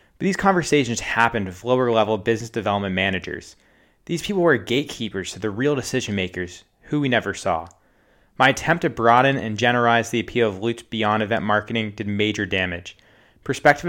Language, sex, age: English, male, 20-39